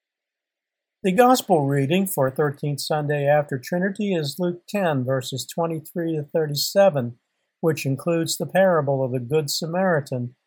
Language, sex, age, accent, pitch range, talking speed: English, male, 50-69, American, 135-175 Hz, 130 wpm